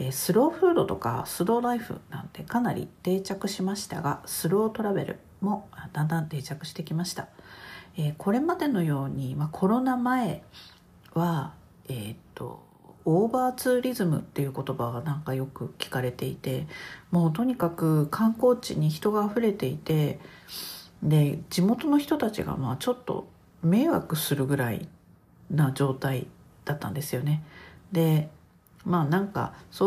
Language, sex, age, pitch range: Japanese, female, 50-69, 150-205 Hz